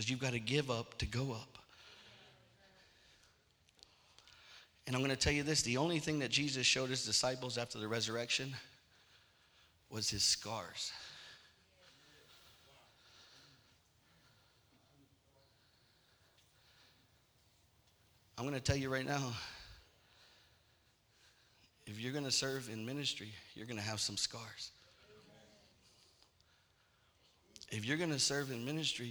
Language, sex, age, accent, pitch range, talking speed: English, male, 40-59, American, 105-135 Hz, 115 wpm